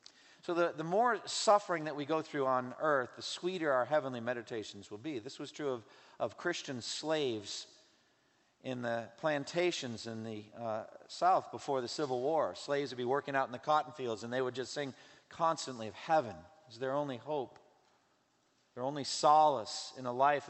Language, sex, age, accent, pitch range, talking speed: English, male, 50-69, American, 130-165 Hz, 185 wpm